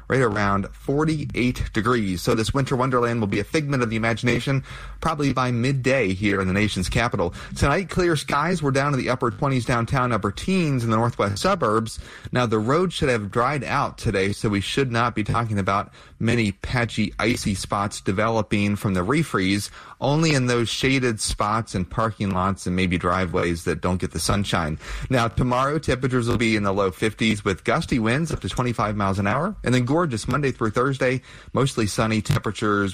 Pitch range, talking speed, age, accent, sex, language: 100-130 Hz, 190 wpm, 30-49, American, male, English